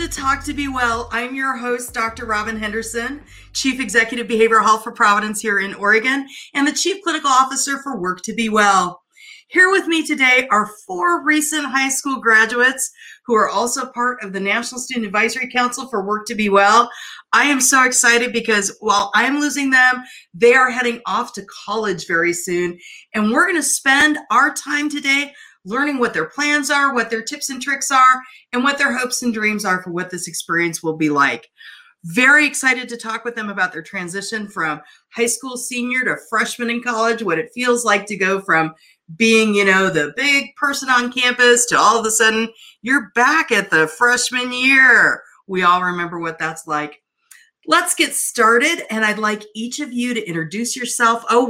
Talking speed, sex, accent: 195 wpm, female, American